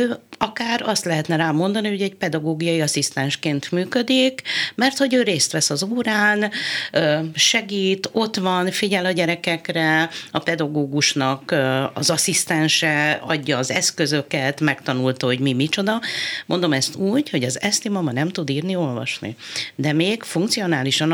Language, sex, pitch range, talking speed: Hungarian, female, 150-195 Hz, 135 wpm